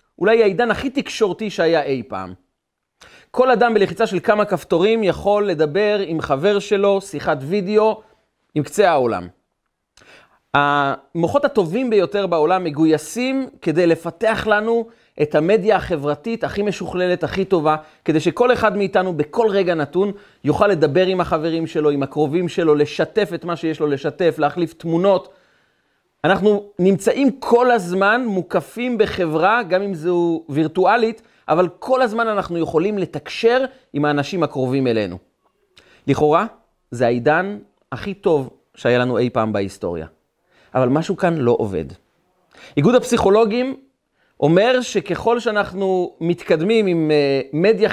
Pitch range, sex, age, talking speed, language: 155-220 Hz, male, 30-49, 130 wpm, Hebrew